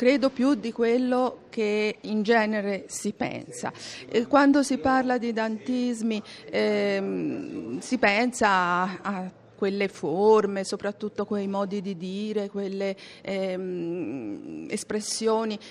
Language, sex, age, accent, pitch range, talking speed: Italian, female, 50-69, native, 180-235 Hz, 115 wpm